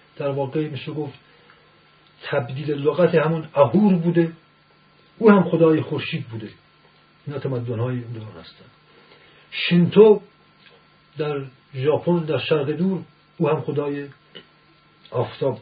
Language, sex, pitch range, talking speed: Persian, male, 145-170 Hz, 115 wpm